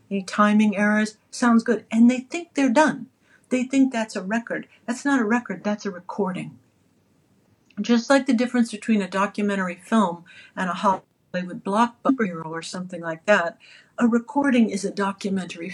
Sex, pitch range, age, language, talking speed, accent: female, 195-245 Hz, 60-79, English, 165 wpm, American